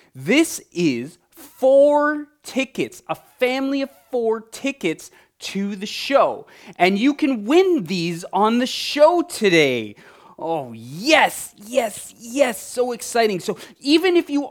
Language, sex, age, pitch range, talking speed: English, male, 20-39, 180-255 Hz, 130 wpm